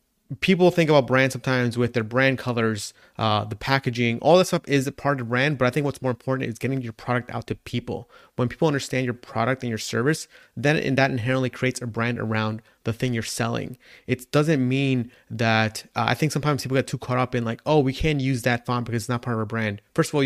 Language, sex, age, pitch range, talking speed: English, male, 30-49, 115-135 Hz, 250 wpm